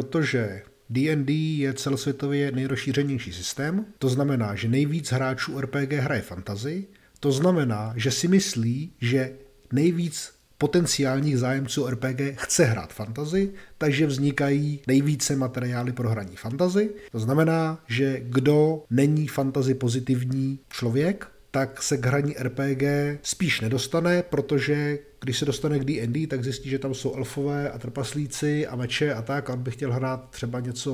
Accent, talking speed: native, 140 wpm